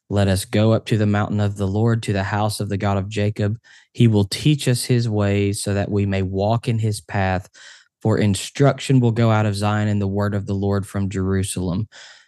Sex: male